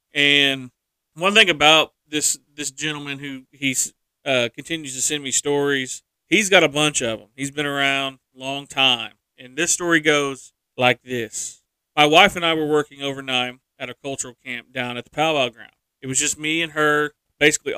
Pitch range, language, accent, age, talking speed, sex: 130-155 Hz, English, American, 40-59, 190 wpm, male